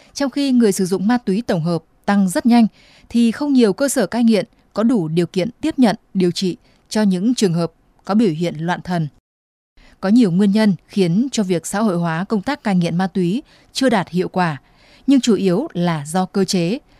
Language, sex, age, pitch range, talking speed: Vietnamese, female, 20-39, 180-230 Hz, 220 wpm